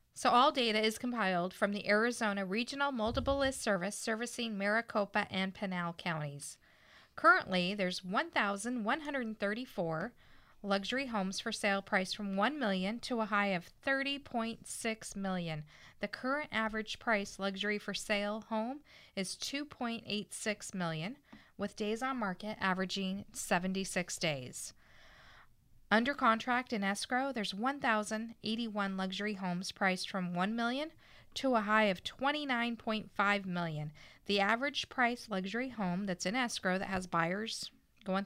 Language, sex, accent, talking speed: English, female, American, 135 wpm